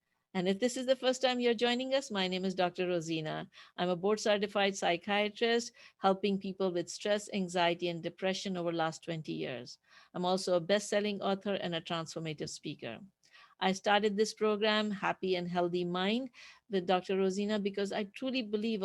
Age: 50-69